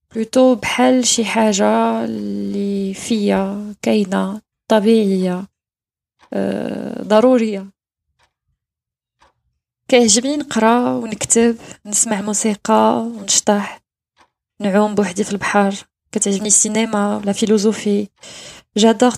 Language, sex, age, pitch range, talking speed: French, female, 20-39, 200-230 Hz, 75 wpm